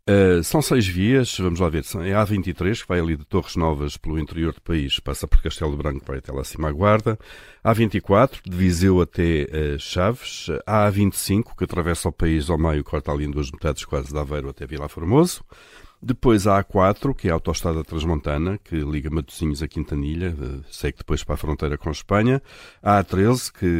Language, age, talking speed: Portuguese, 50-69, 195 wpm